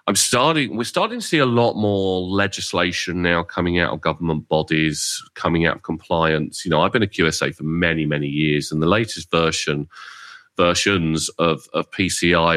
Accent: British